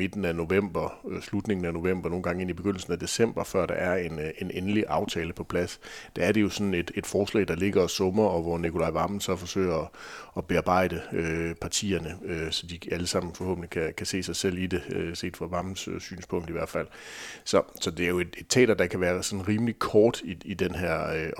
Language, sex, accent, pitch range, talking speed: Danish, male, native, 90-105 Hz, 235 wpm